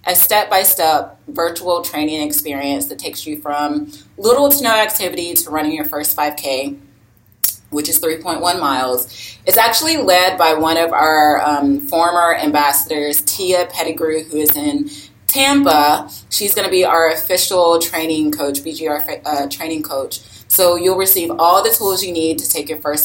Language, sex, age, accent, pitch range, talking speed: English, female, 20-39, American, 140-175 Hz, 160 wpm